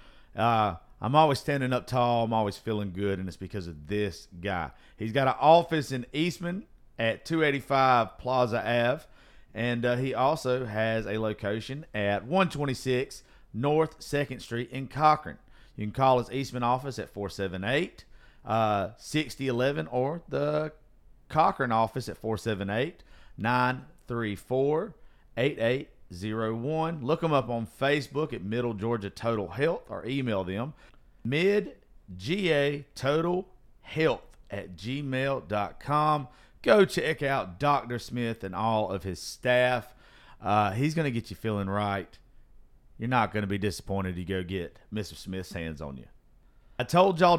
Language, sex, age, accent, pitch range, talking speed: English, male, 40-59, American, 105-140 Hz, 140 wpm